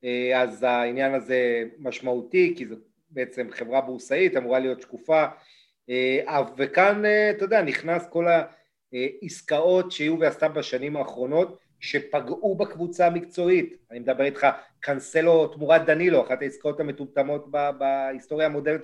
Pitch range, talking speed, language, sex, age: 135-175 Hz, 115 wpm, Hebrew, male, 30-49